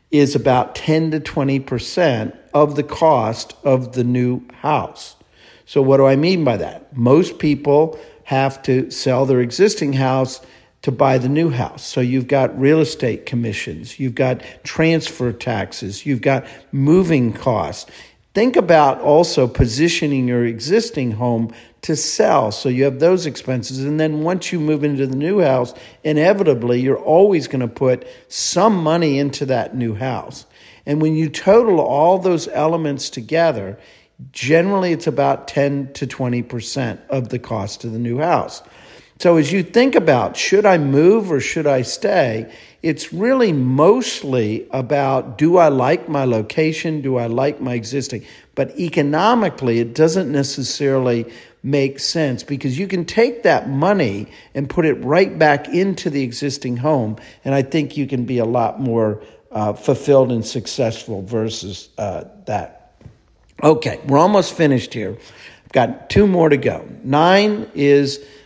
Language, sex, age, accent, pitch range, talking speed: English, male, 50-69, American, 125-155 Hz, 155 wpm